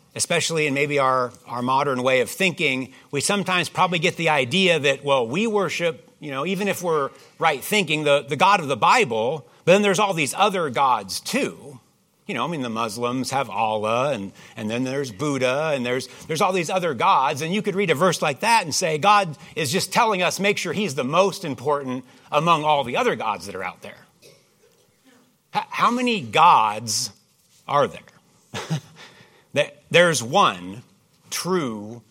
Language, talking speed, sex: English, 185 wpm, male